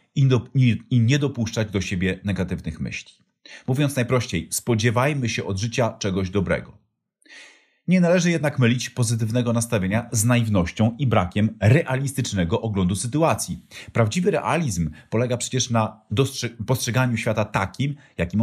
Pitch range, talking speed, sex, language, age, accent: 95-125 Hz, 125 wpm, male, Polish, 40-59, native